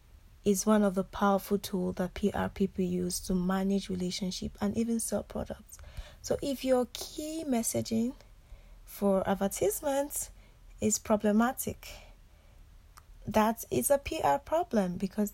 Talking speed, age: 125 wpm, 20-39